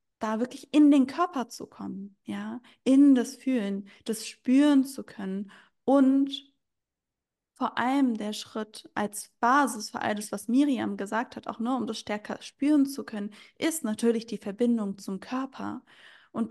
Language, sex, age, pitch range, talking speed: German, female, 20-39, 215-265 Hz, 155 wpm